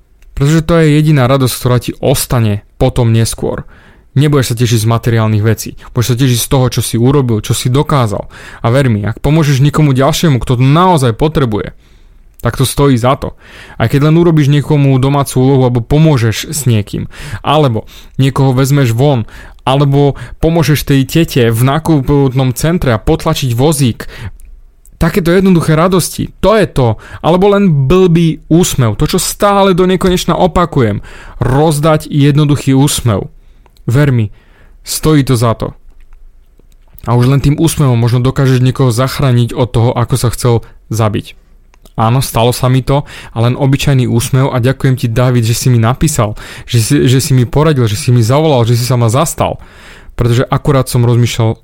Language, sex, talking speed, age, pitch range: Slovak, male, 165 wpm, 30-49, 120-145 Hz